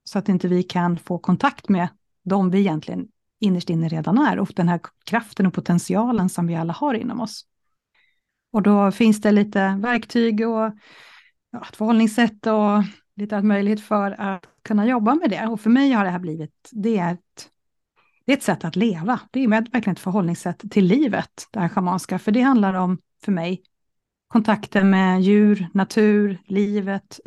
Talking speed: 185 wpm